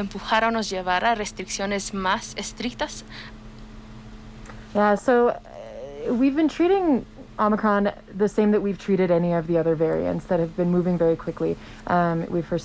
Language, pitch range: English, 170-195 Hz